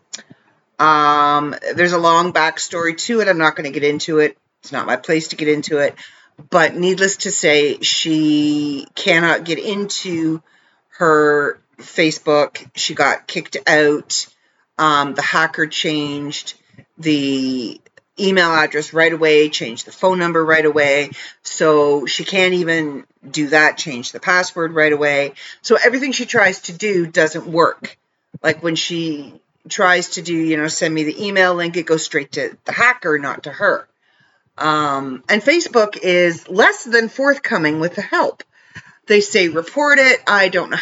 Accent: American